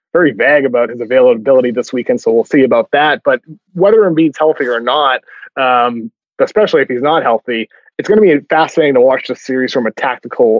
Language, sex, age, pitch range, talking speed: English, male, 20-39, 125-185 Hz, 205 wpm